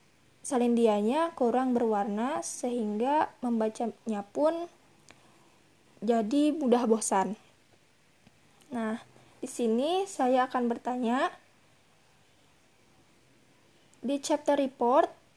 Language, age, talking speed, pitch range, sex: Indonesian, 20-39, 70 wpm, 235-295 Hz, female